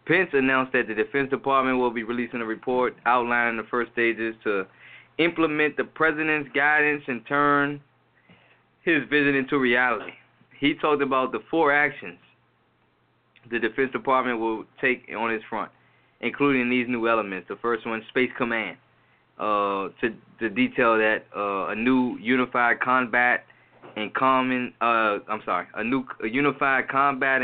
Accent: American